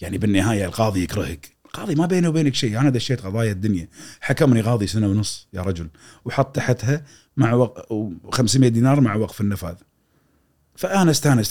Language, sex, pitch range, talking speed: Arabic, male, 85-115 Hz, 155 wpm